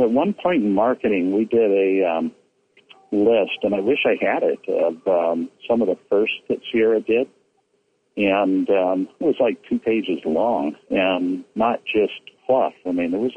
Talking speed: 185 wpm